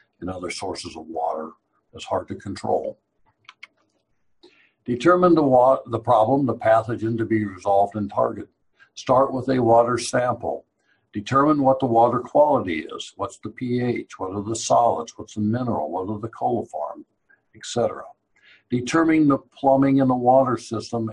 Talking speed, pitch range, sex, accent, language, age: 155 wpm, 105-125 Hz, male, American, English, 60-79